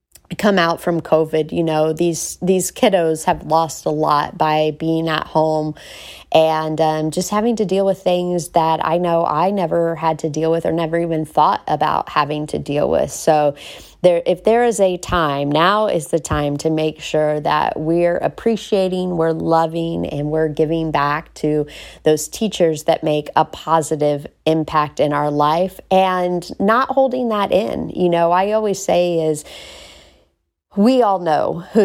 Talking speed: 175 wpm